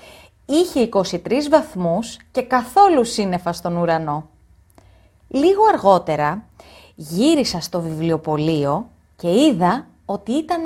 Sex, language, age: female, Greek, 30-49